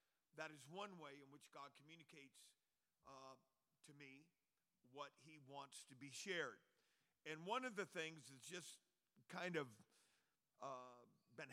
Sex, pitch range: male, 140-175 Hz